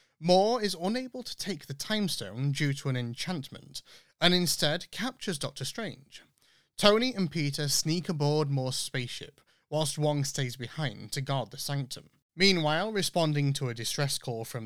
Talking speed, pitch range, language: 160 wpm, 130-170 Hz, English